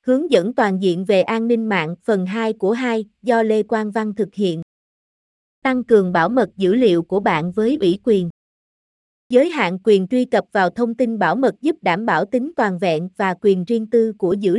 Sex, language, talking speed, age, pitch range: female, Vietnamese, 210 wpm, 20-39, 185-240 Hz